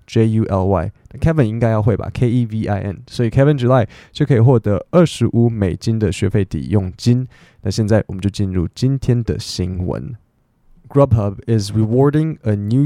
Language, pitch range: Chinese, 105-125 Hz